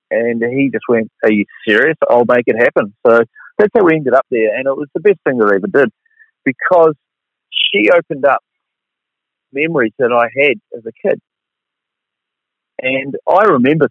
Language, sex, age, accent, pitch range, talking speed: English, male, 40-59, Australian, 115-150 Hz, 175 wpm